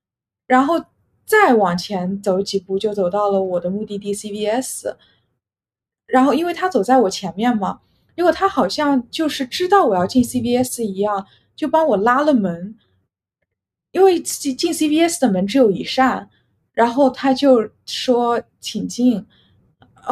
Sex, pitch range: female, 200-265 Hz